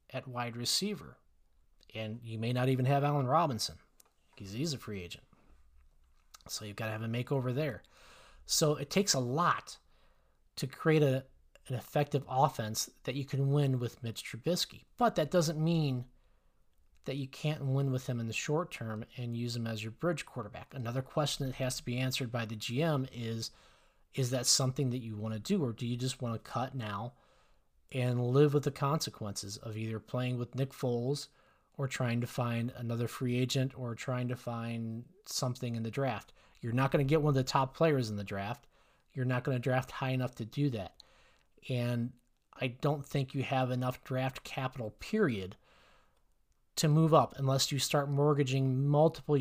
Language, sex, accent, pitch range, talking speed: English, male, American, 115-140 Hz, 185 wpm